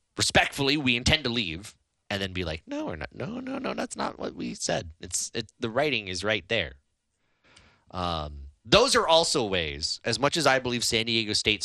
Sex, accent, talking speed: male, American, 205 wpm